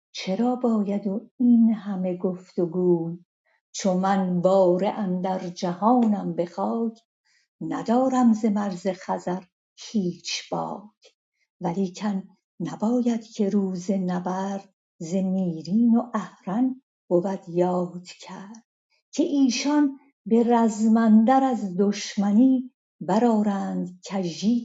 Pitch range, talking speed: 185-225 Hz, 95 wpm